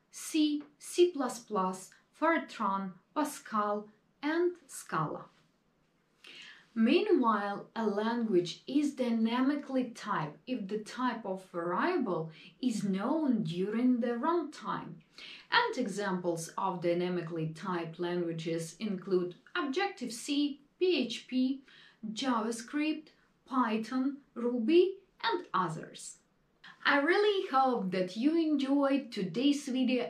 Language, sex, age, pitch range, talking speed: English, female, 30-49, 195-285 Hz, 90 wpm